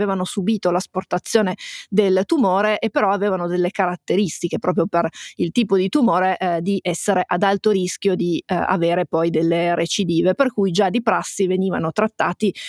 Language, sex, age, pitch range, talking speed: Italian, female, 30-49, 185-215 Hz, 165 wpm